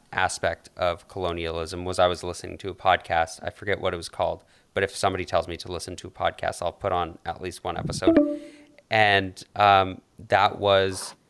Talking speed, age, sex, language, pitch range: 195 wpm, 30-49, male, English, 85-100 Hz